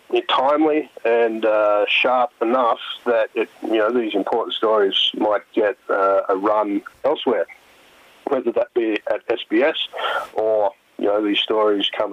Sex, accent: male, Australian